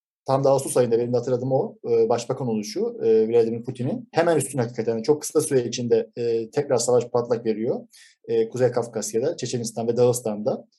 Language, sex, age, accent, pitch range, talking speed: Turkish, male, 50-69, native, 125-175 Hz, 180 wpm